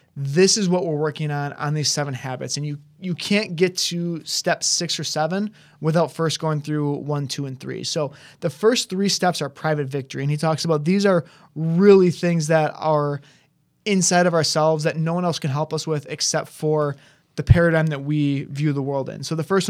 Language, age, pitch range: English, 20-39, 150-180 Hz